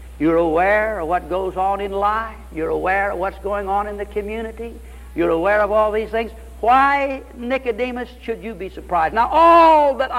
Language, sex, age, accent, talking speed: English, male, 60-79, American, 190 wpm